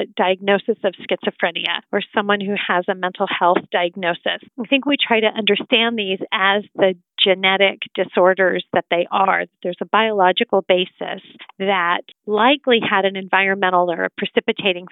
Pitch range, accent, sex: 190-225 Hz, American, female